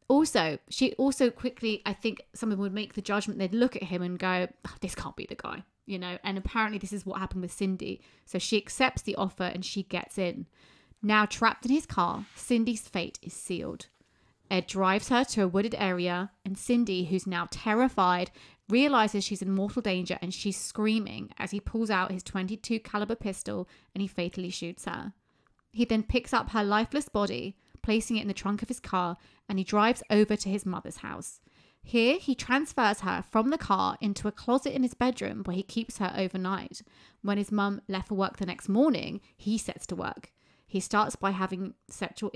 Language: English